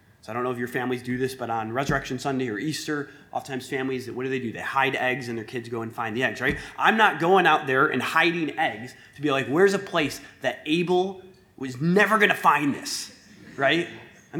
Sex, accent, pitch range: male, American, 125-170 Hz